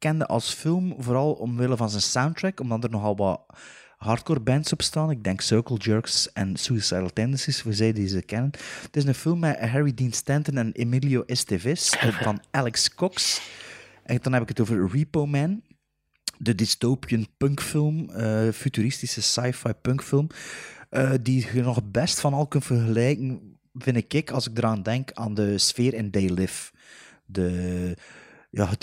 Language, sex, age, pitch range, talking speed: Dutch, male, 30-49, 100-130 Hz, 170 wpm